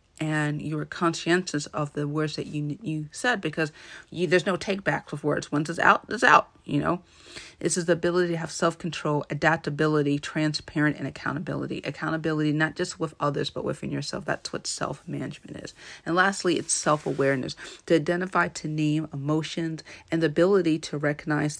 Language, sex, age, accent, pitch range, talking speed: English, female, 40-59, American, 145-165 Hz, 170 wpm